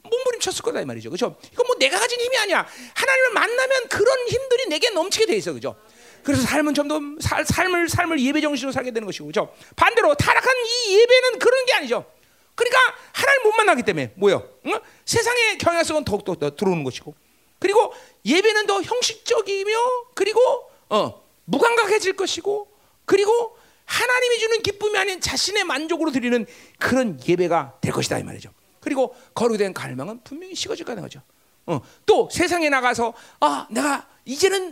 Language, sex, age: Korean, male, 40-59